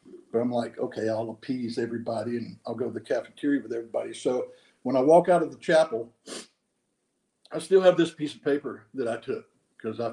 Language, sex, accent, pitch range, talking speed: English, male, American, 125-160 Hz, 200 wpm